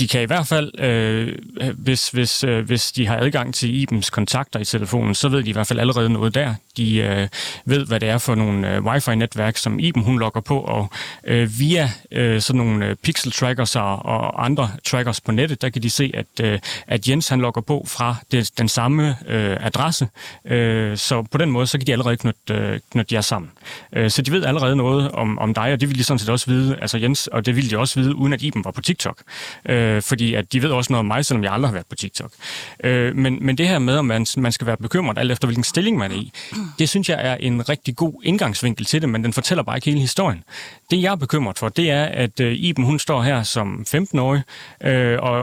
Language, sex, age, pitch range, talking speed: Danish, male, 30-49, 115-145 Hz, 245 wpm